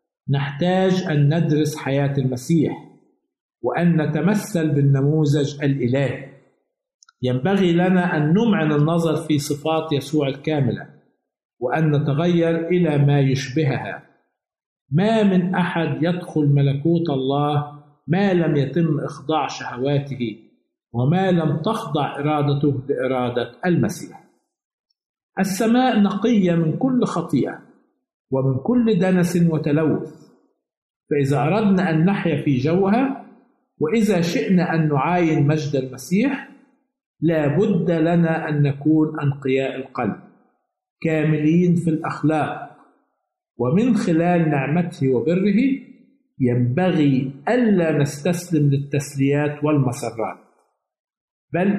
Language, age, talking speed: Arabic, 50-69, 95 wpm